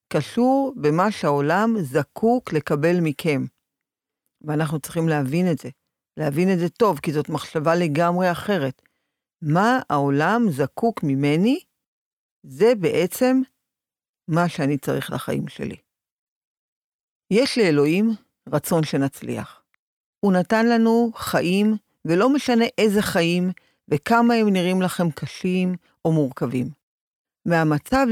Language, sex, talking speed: Hebrew, female, 110 wpm